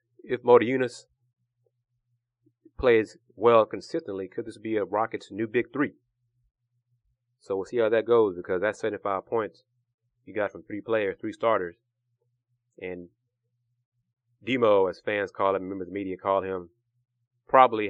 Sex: male